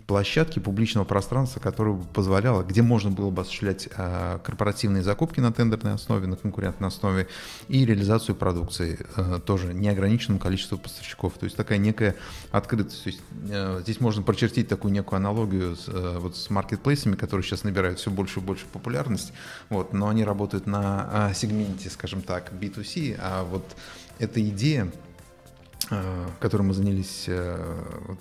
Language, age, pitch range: Russian, 30-49, 95-110 Hz